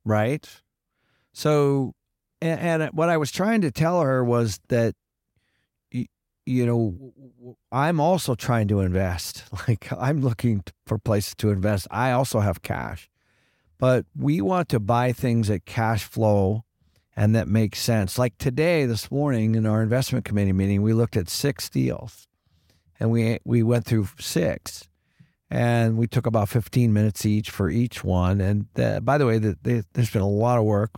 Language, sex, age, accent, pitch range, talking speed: English, male, 50-69, American, 105-125 Hz, 170 wpm